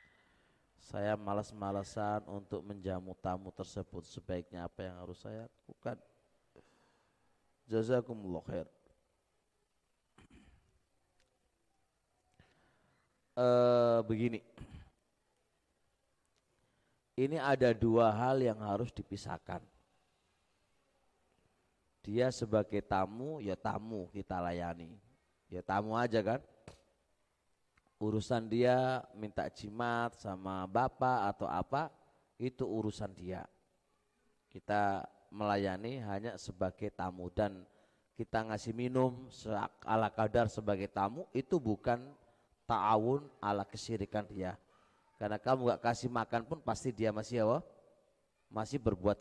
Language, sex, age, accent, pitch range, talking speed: Indonesian, male, 30-49, native, 100-120 Hz, 95 wpm